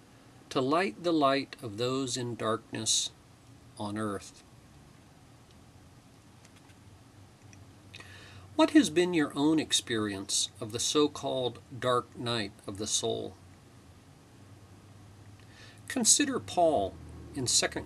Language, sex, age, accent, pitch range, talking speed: English, male, 50-69, American, 105-140 Hz, 95 wpm